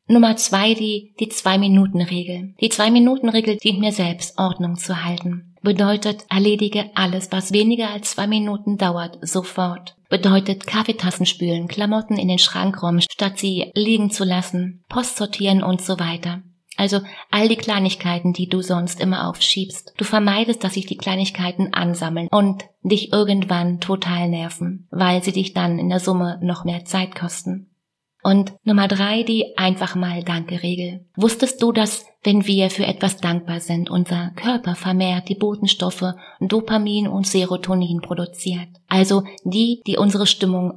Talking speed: 150 wpm